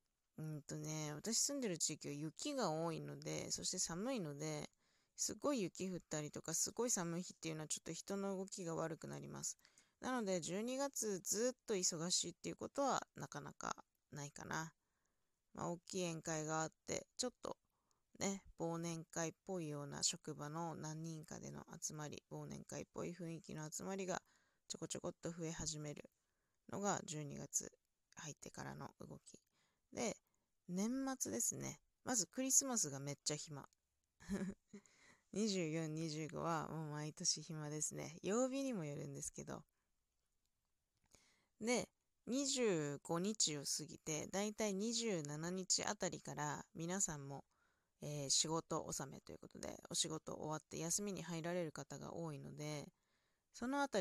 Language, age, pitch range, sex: Japanese, 20-39, 155-200 Hz, female